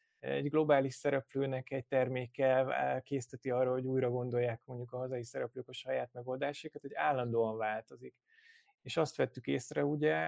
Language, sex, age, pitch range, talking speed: Hungarian, male, 20-39, 115-140 Hz, 145 wpm